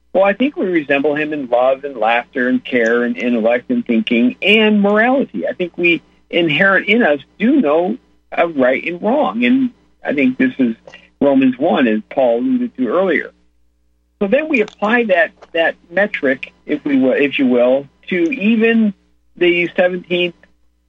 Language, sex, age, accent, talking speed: English, male, 50-69, American, 170 wpm